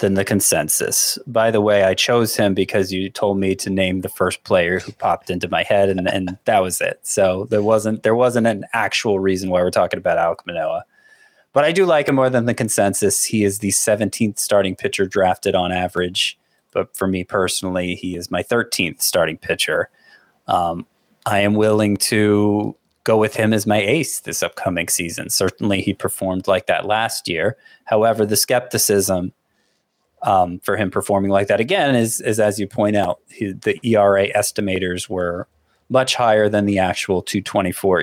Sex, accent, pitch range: male, American, 95-115 Hz